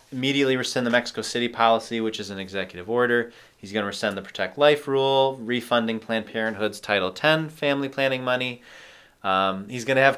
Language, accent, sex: English, American, male